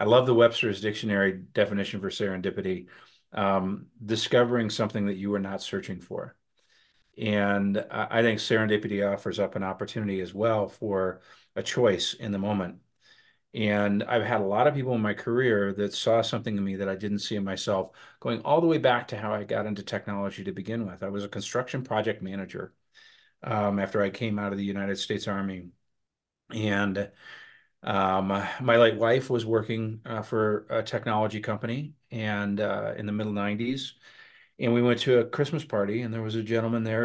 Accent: American